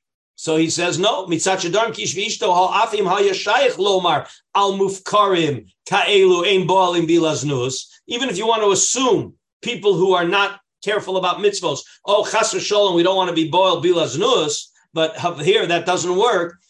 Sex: male